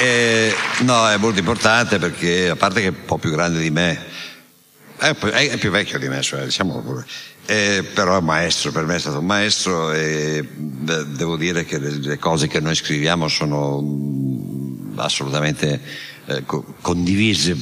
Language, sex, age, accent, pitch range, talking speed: Italian, male, 60-79, native, 75-90 Hz, 155 wpm